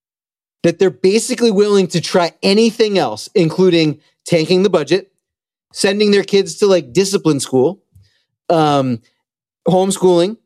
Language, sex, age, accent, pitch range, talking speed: English, male, 30-49, American, 160-200 Hz, 120 wpm